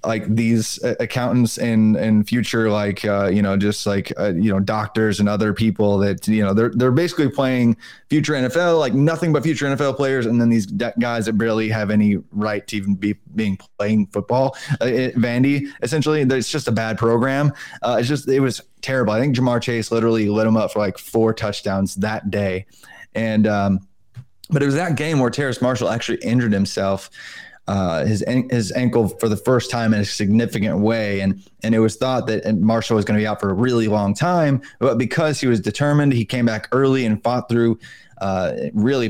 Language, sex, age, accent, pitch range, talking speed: English, male, 20-39, American, 105-130 Hz, 205 wpm